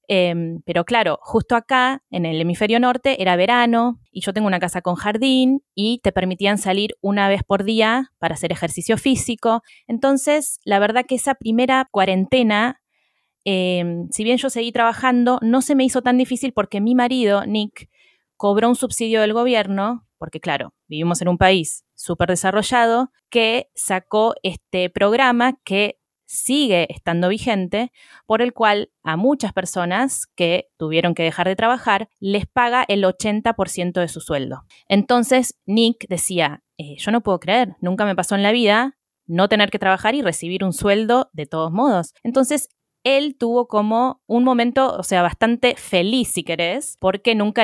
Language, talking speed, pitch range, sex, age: Spanish, 165 wpm, 180-240 Hz, female, 20-39